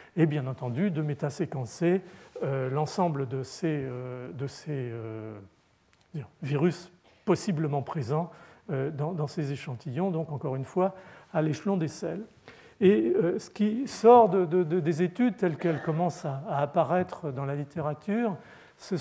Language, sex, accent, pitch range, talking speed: French, male, French, 140-180 Hz, 155 wpm